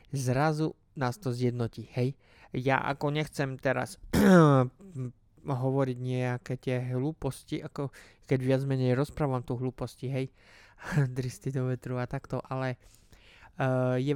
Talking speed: 120 wpm